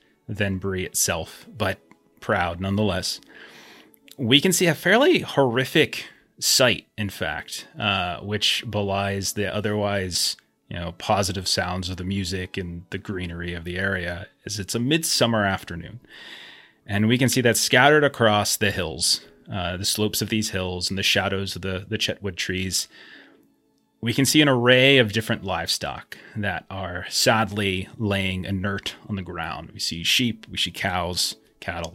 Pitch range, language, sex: 95-120 Hz, English, male